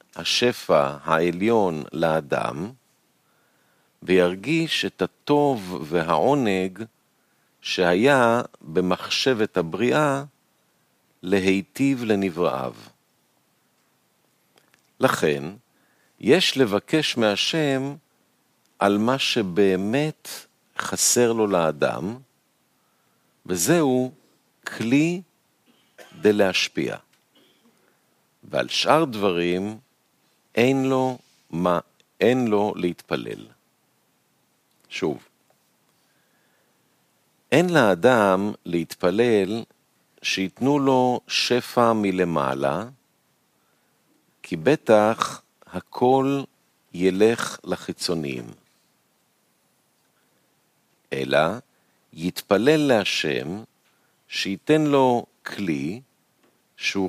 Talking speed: 55 wpm